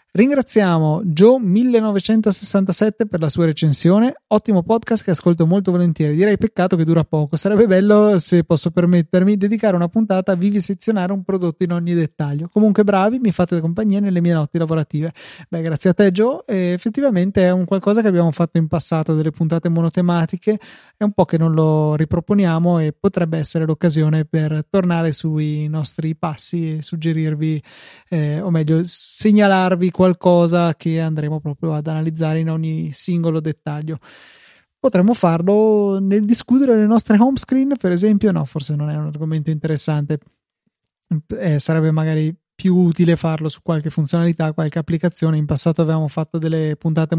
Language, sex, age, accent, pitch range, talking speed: Italian, male, 30-49, native, 160-190 Hz, 165 wpm